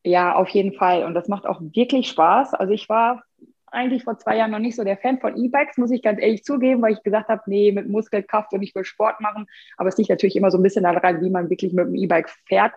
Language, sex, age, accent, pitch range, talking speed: German, female, 20-39, German, 185-225 Hz, 270 wpm